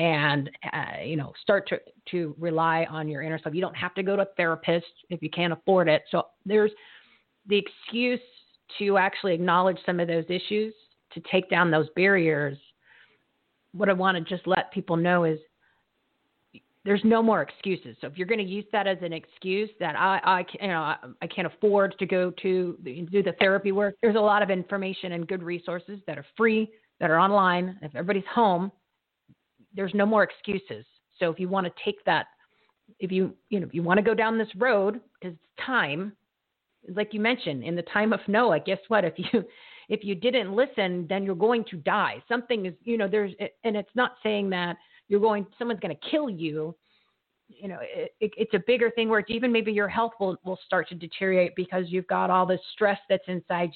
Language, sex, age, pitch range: English, female, 40-59, 175-210 Hz